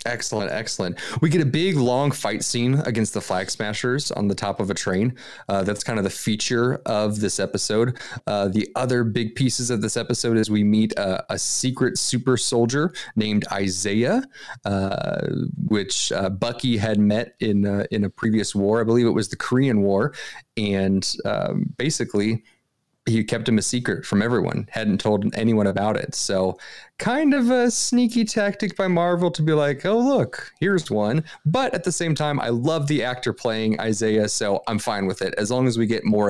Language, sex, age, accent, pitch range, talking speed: English, male, 30-49, American, 105-135 Hz, 195 wpm